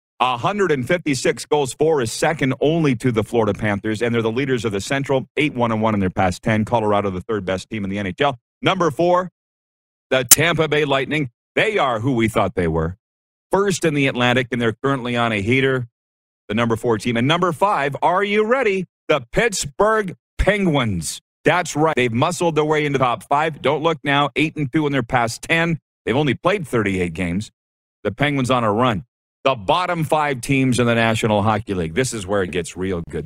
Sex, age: male, 40-59